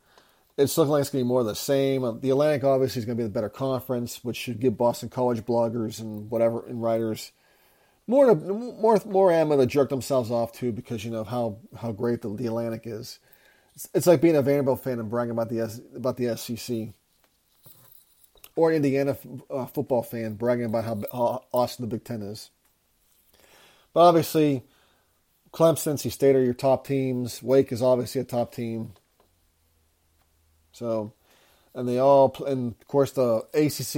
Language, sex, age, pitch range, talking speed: English, male, 40-59, 115-140 Hz, 185 wpm